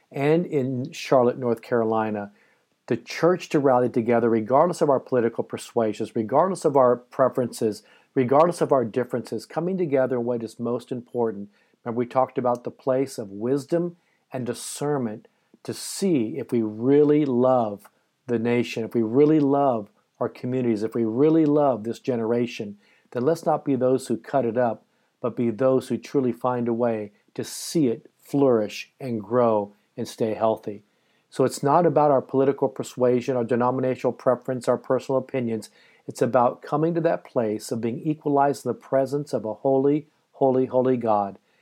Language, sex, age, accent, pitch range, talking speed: English, male, 50-69, American, 120-145 Hz, 165 wpm